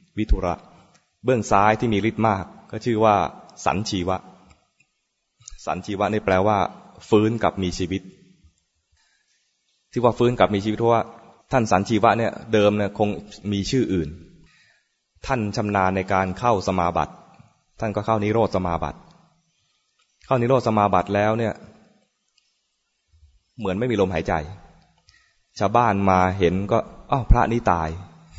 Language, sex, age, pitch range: English, male, 20-39, 90-115 Hz